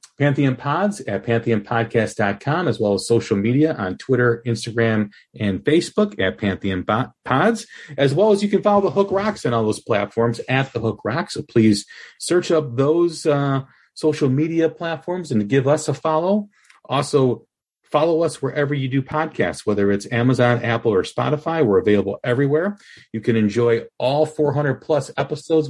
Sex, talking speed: male, 165 wpm